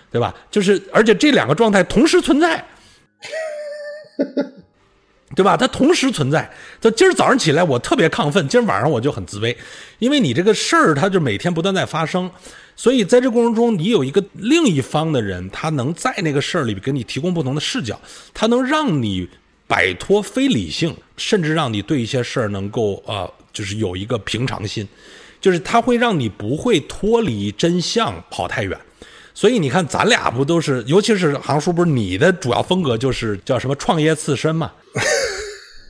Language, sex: Chinese, male